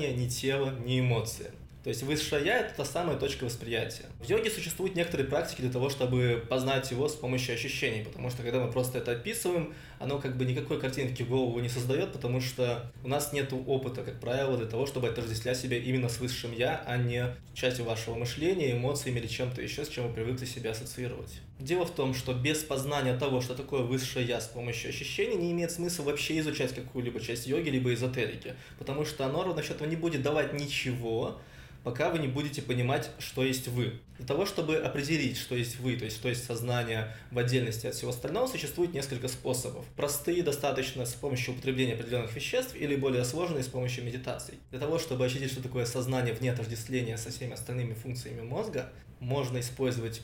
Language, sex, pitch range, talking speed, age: Russian, male, 125-145 Hz, 195 wpm, 20-39